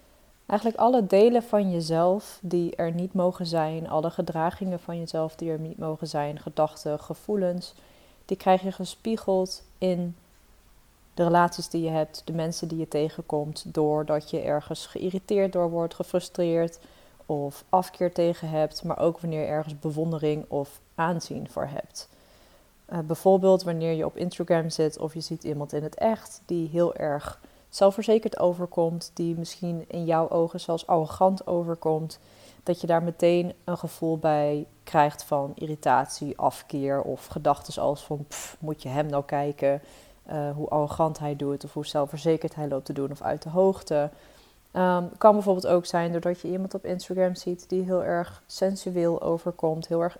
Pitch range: 155-180 Hz